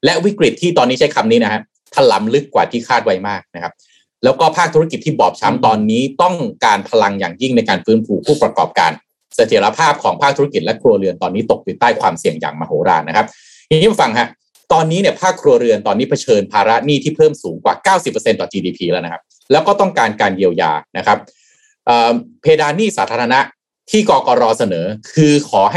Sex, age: male, 30-49